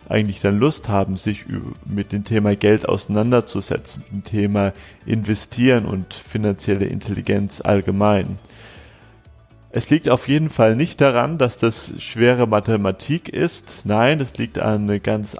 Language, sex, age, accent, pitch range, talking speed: German, male, 30-49, German, 105-125 Hz, 135 wpm